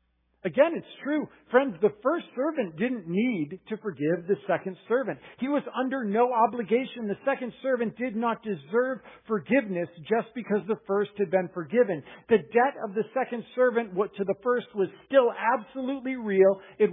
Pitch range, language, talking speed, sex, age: 175-245 Hz, English, 165 wpm, male, 50-69